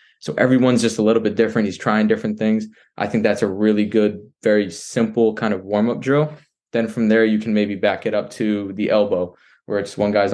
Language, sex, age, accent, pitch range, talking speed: English, male, 20-39, American, 105-125 Hz, 225 wpm